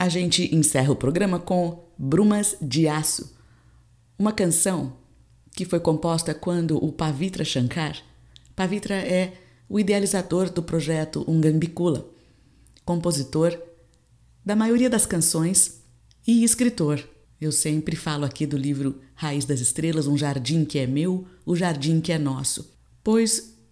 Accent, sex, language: Brazilian, female, Portuguese